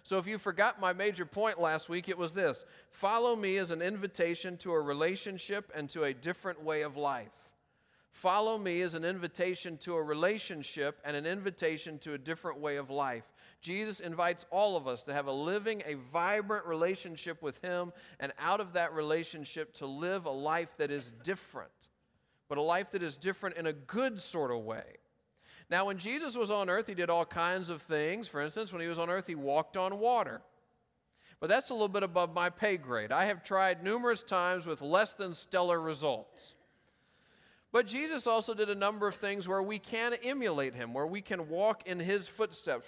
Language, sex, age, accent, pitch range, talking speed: English, male, 40-59, American, 160-200 Hz, 200 wpm